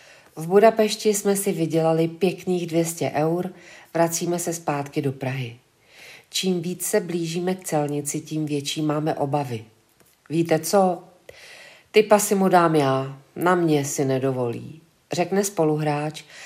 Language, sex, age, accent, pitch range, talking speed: Czech, female, 40-59, native, 150-190 Hz, 130 wpm